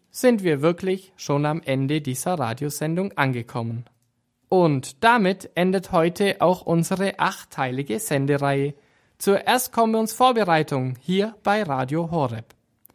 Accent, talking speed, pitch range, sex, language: German, 120 wpm, 125-200 Hz, male, German